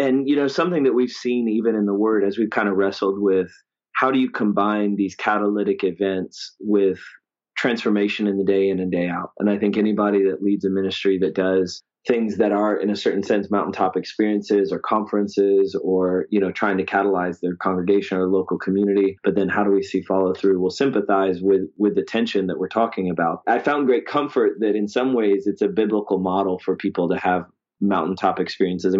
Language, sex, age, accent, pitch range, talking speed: English, male, 20-39, American, 95-110 Hz, 210 wpm